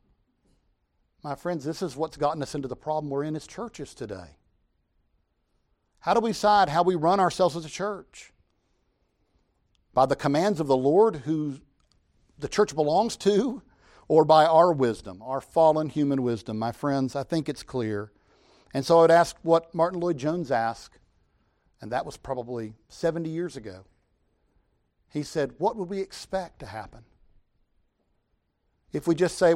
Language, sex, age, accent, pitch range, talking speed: English, male, 50-69, American, 115-165 Hz, 160 wpm